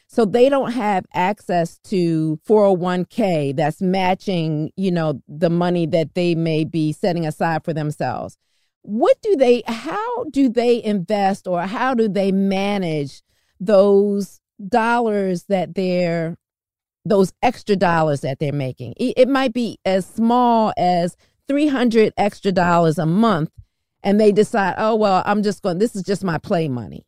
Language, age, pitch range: English, 40-59, 170-235 Hz